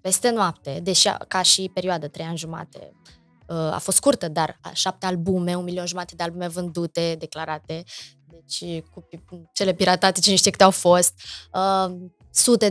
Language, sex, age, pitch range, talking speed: Romanian, female, 20-39, 175-215 Hz, 150 wpm